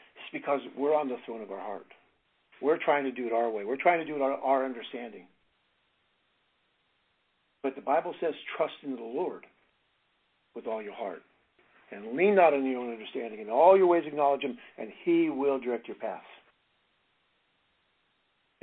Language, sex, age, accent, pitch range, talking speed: English, male, 50-69, American, 135-195 Hz, 175 wpm